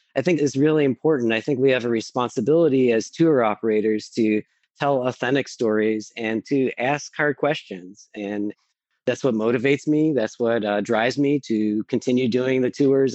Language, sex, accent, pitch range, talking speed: English, male, American, 115-140 Hz, 175 wpm